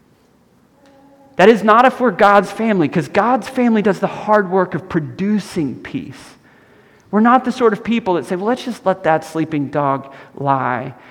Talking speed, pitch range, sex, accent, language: 180 wpm, 145-195 Hz, male, American, English